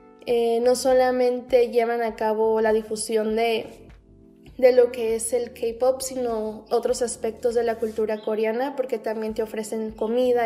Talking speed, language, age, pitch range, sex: 155 wpm, Spanish, 10-29, 230-275 Hz, female